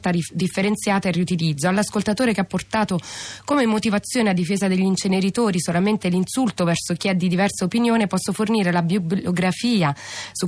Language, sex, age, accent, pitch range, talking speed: Italian, female, 20-39, native, 175-210 Hz, 150 wpm